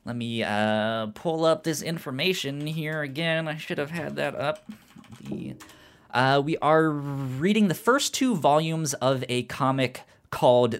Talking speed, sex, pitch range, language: 150 wpm, male, 105-150 Hz, English